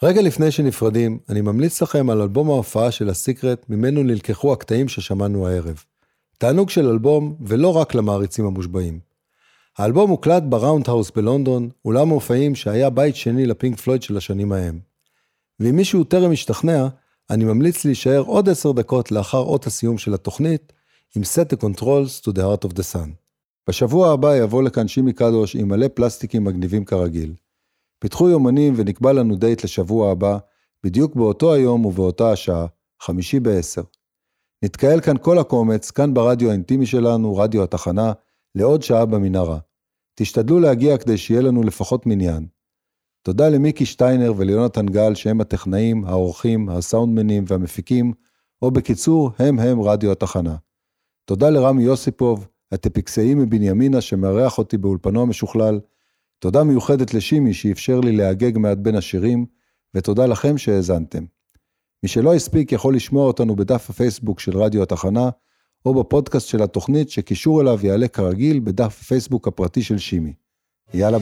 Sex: male